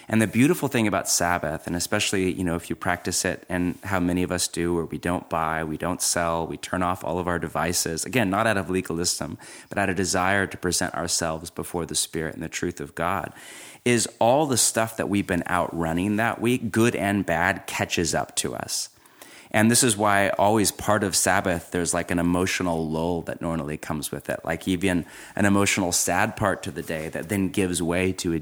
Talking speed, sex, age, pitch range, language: 220 wpm, male, 30-49, 85-105 Hz, English